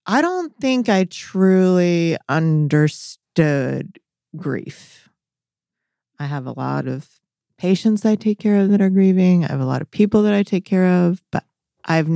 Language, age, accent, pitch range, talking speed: English, 30-49, American, 155-195 Hz, 165 wpm